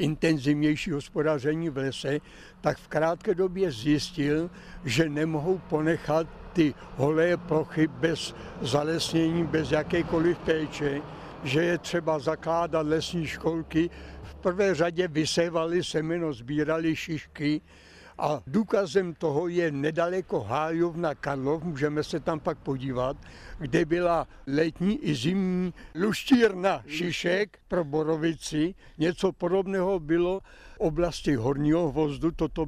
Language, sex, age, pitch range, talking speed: Czech, male, 60-79, 145-170 Hz, 115 wpm